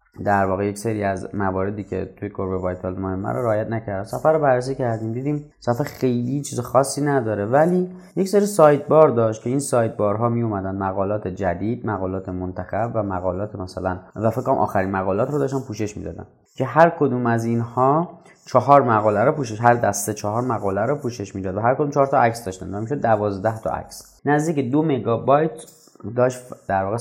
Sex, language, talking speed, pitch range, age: male, Persian, 185 wpm, 100-140 Hz, 30-49